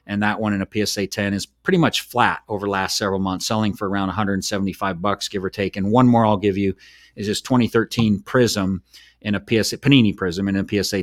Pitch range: 100-115 Hz